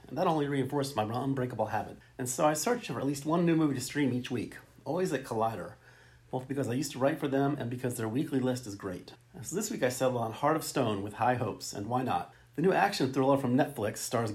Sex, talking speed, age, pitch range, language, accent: male, 255 wpm, 40-59, 110-145 Hz, English, American